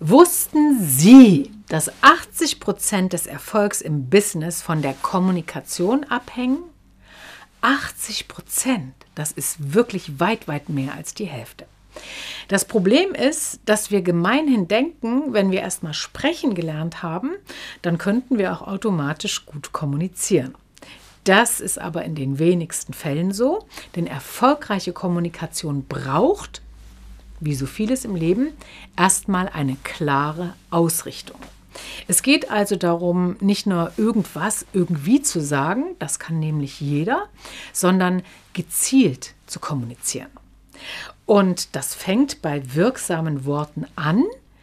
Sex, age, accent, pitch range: female, 50-69, German, 155-220 Hz